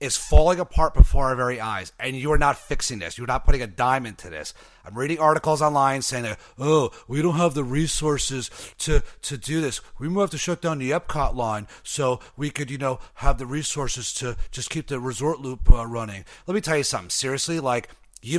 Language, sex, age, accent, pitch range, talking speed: English, male, 30-49, American, 115-150 Hz, 220 wpm